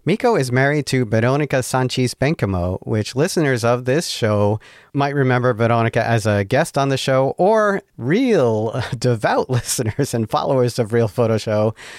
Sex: male